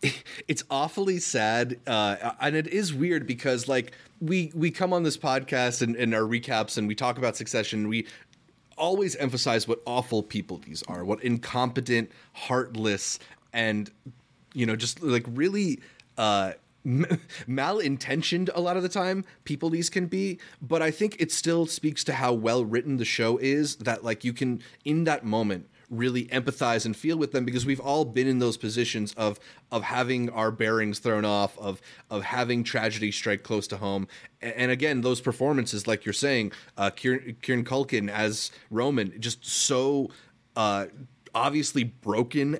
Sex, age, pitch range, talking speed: male, 30-49, 110-140 Hz, 165 wpm